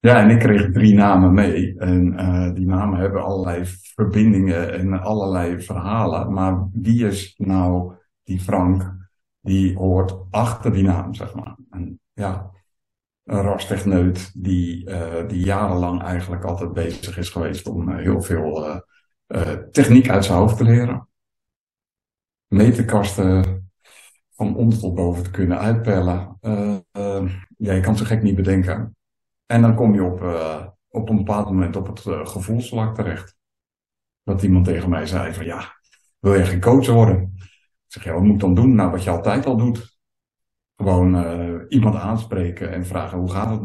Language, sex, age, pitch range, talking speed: Dutch, male, 60-79, 90-105 Hz, 170 wpm